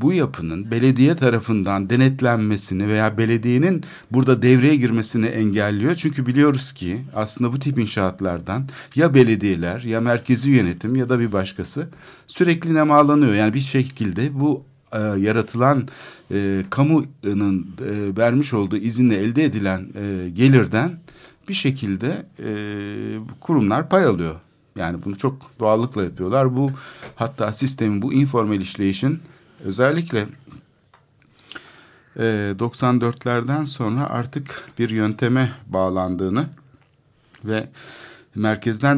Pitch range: 100-135 Hz